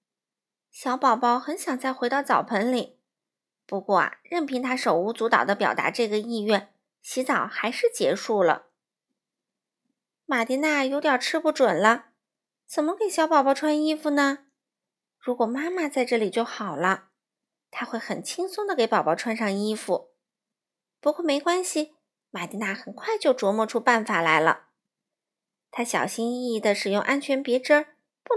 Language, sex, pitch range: Chinese, female, 220-310 Hz